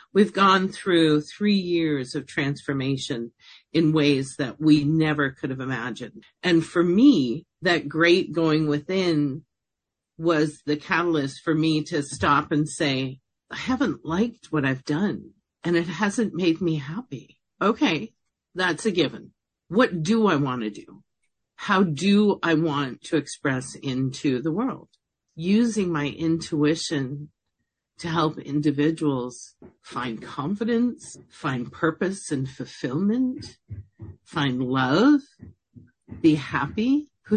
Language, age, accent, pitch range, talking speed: English, 50-69, American, 145-175 Hz, 125 wpm